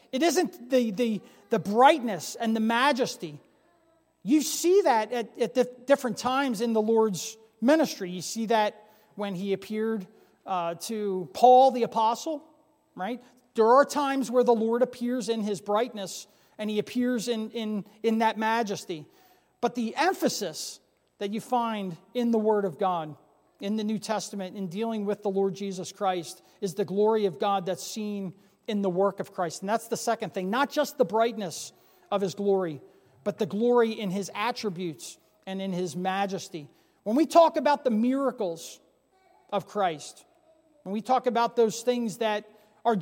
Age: 40-59